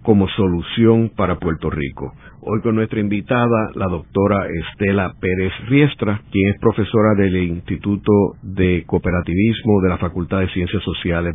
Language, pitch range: Spanish, 95-125 Hz